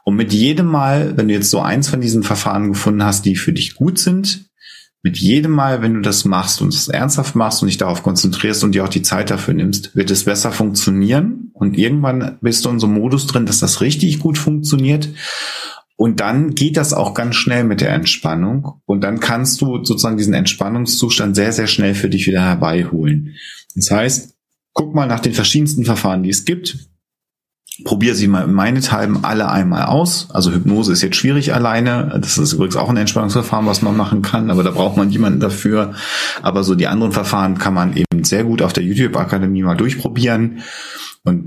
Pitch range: 100-135 Hz